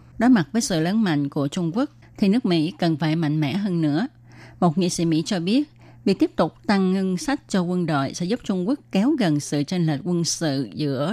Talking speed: 245 wpm